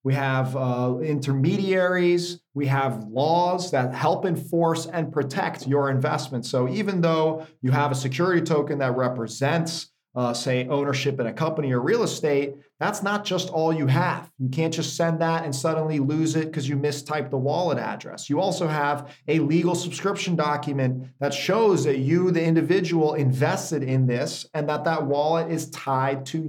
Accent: American